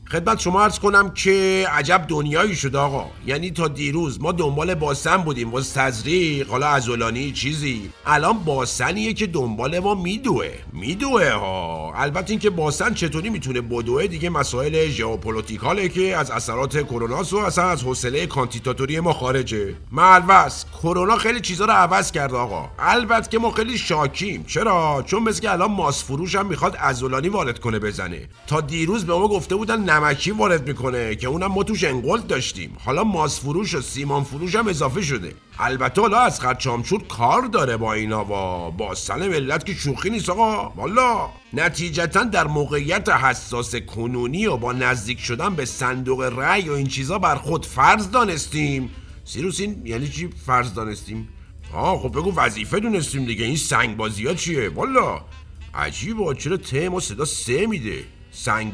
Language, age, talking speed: Persian, 50-69, 165 wpm